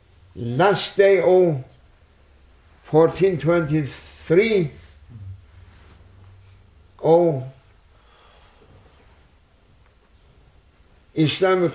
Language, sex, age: English, male, 60-79